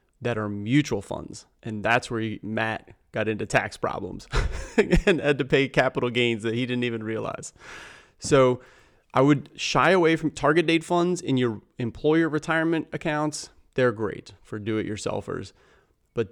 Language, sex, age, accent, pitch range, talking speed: English, male, 30-49, American, 115-150 Hz, 155 wpm